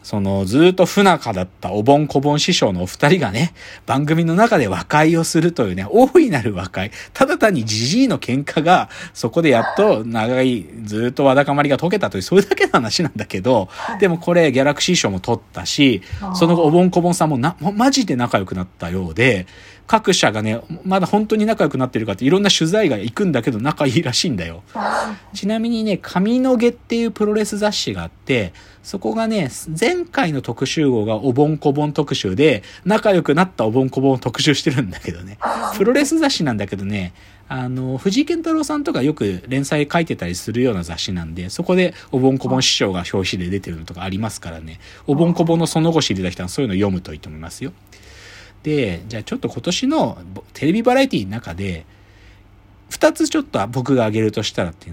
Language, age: Japanese, 40-59